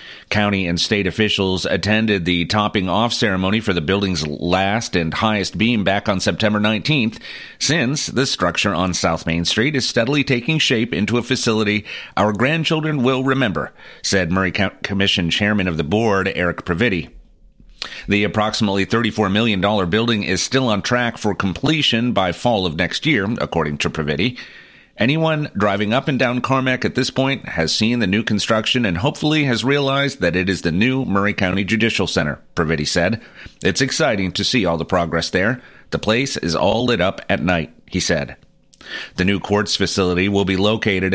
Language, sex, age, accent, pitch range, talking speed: English, male, 40-59, American, 95-115 Hz, 175 wpm